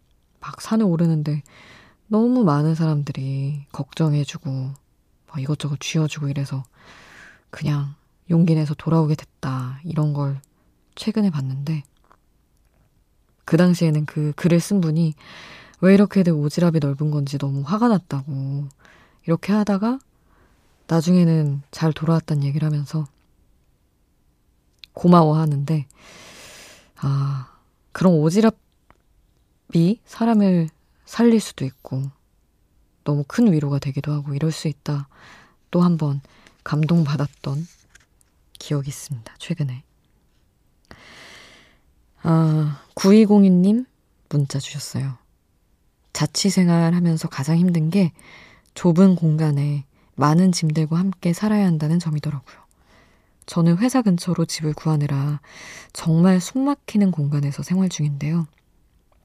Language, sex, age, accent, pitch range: Korean, female, 20-39, native, 140-175 Hz